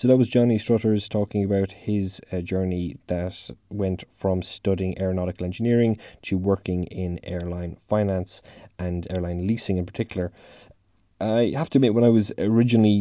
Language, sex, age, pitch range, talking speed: English, male, 20-39, 90-110 Hz, 155 wpm